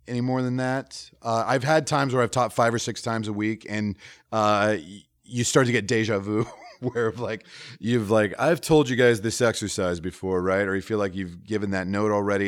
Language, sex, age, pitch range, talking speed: English, male, 30-49, 100-125 Hz, 225 wpm